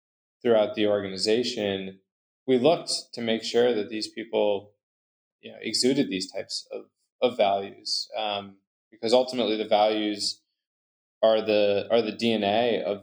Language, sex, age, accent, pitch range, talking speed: English, male, 20-39, American, 105-125 Hz, 140 wpm